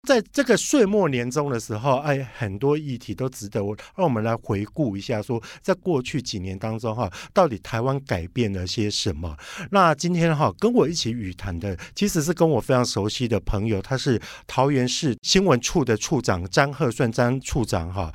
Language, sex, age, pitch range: Chinese, male, 50-69, 110-155 Hz